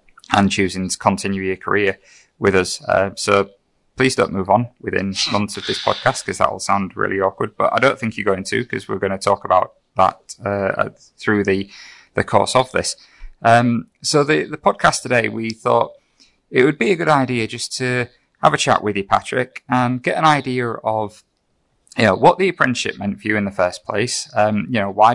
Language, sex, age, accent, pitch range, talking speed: English, male, 20-39, British, 100-115 Hz, 210 wpm